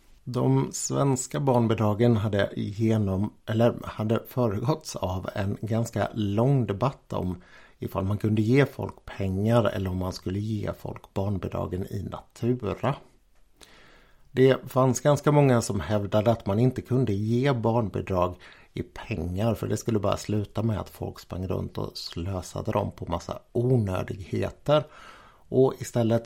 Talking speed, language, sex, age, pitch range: 140 wpm, Swedish, male, 60-79, 95-120 Hz